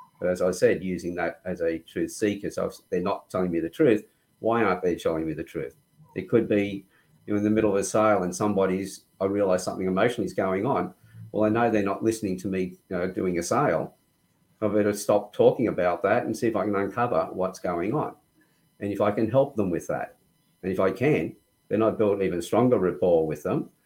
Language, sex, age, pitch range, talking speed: English, male, 50-69, 95-115 Hz, 235 wpm